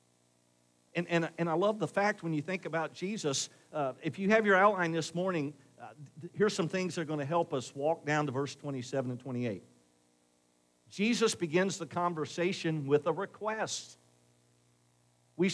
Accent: American